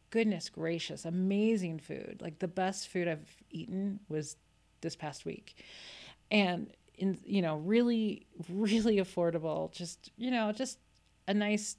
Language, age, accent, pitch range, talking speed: English, 40-59, American, 160-205 Hz, 135 wpm